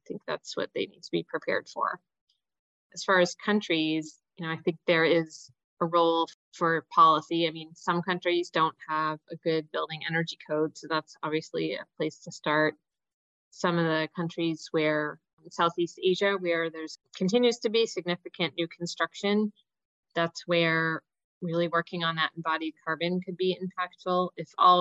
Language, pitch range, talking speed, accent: English, 155-180 Hz, 165 wpm, American